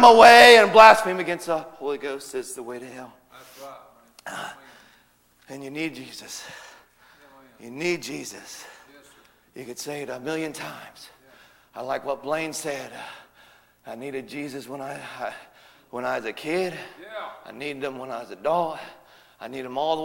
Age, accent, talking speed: 40-59, American, 170 wpm